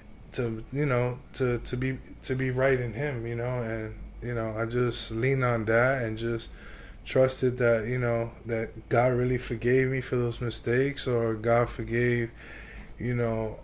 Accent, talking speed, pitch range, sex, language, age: American, 175 wpm, 110-125 Hz, male, English, 20-39